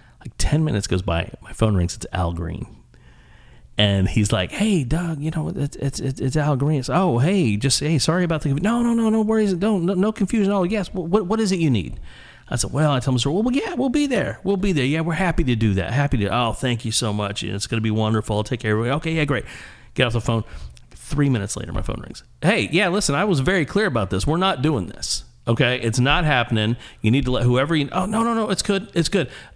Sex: male